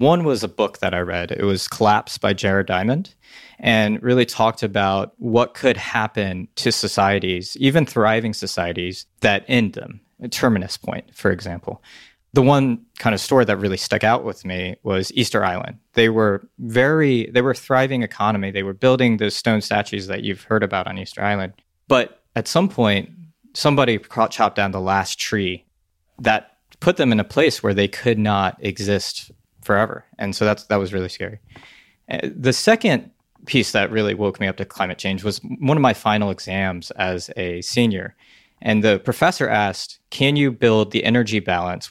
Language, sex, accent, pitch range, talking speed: English, male, American, 95-120 Hz, 185 wpm